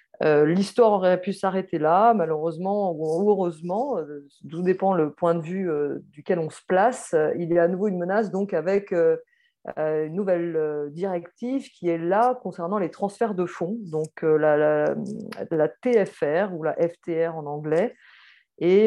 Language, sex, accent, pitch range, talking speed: French, female, French, 165-205 Hz, 180 wpm